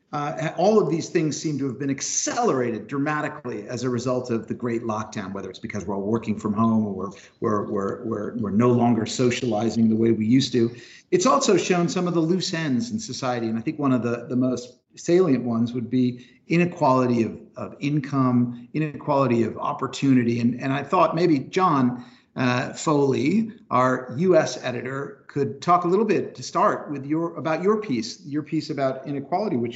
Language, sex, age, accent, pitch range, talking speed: English, male, 50-69, American, 120-160 Hz, 195 wpm